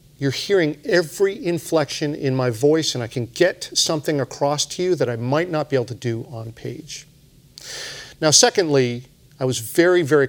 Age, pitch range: 50-69, 125-155 Hz